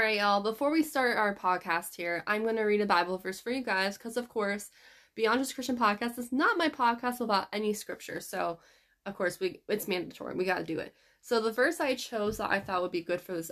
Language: English